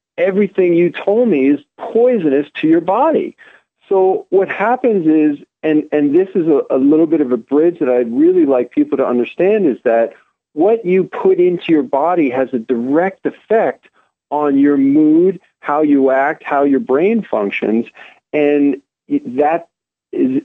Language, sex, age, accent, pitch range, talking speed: English, male, 40-59, American, 115-175 Hz, 165 wpm